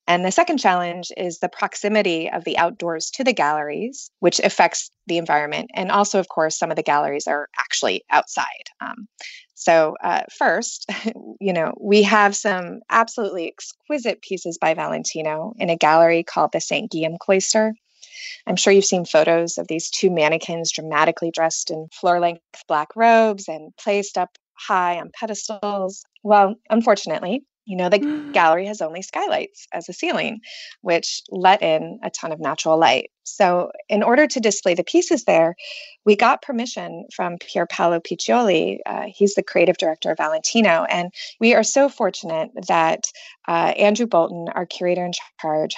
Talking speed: 165 wpm